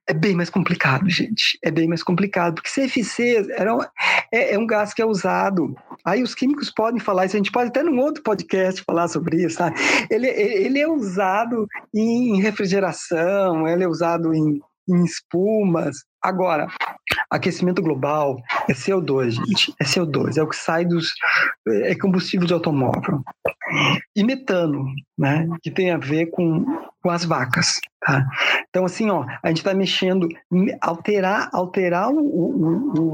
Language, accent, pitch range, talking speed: Portuguese, Brazilian, 170-220 Hz, 160 wpm